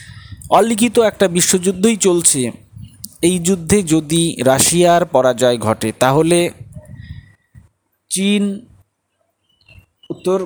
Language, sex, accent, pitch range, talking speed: Bengali, male, native, 115-175 Hz, 75 wpm